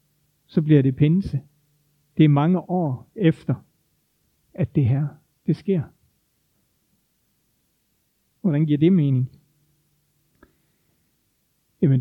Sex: male